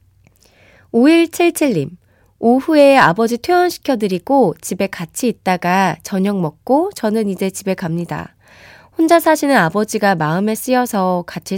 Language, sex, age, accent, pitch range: Korean, female, 20-39, native, 185-255 Hz